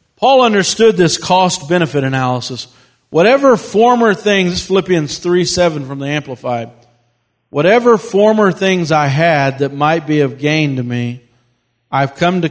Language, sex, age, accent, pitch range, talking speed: English, male, 50-69, American, 135-170 Hz, 145 wpm